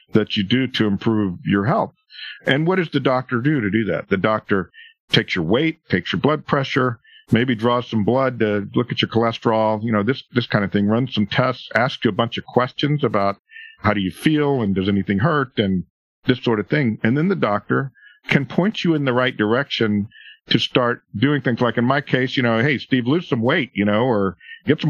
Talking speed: 230 wpm